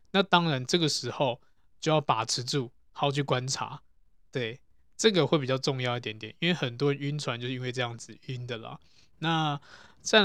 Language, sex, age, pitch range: Chinese, male, 20-39, 120-150 Hz